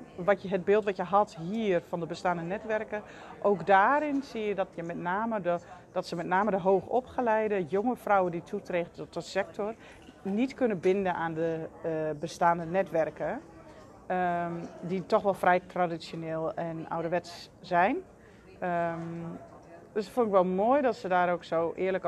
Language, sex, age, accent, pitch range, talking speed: Dutch, female, 30-49, Dutch, 165-190 Hz, 175 wpm